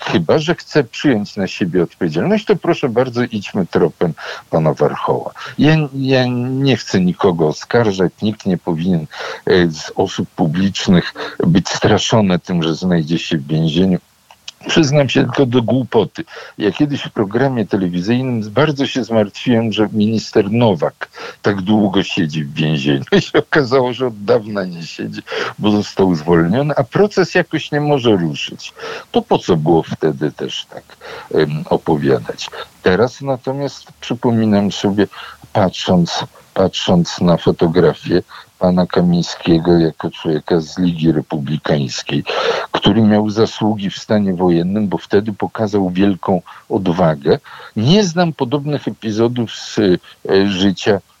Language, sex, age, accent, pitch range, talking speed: Polish, male, 50-69, native, 90-135 Hz, 130 wpm